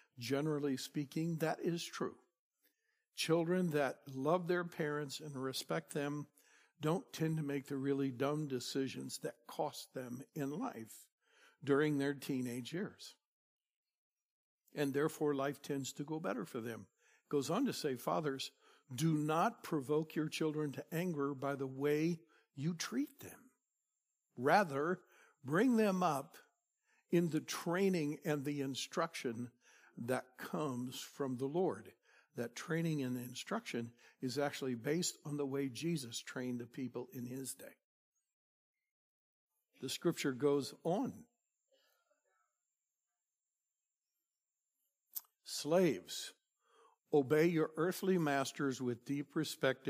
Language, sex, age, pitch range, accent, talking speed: English, male, 60-79, 135-165 Hz, American, 125 wpm